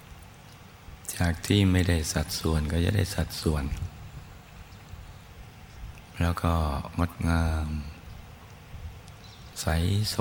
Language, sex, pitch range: Thai, male, 80-95 Hz